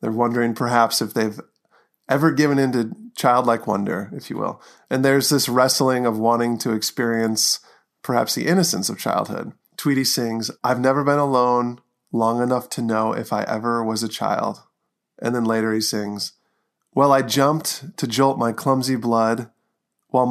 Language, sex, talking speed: English, male, 170 wpm